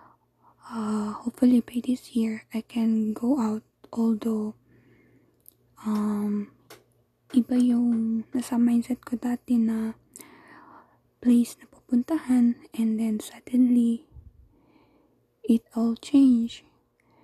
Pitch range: 230-255 Hz